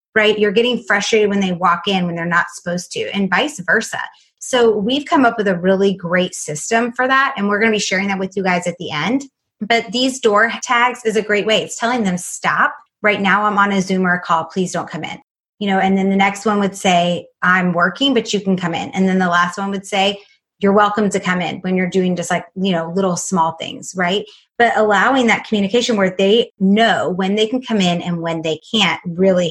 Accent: American